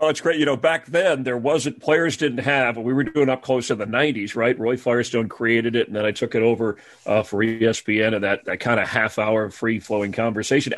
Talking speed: 235 wpm